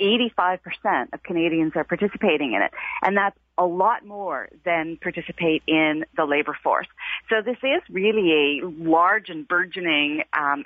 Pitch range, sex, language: 155-205 Hz, female, English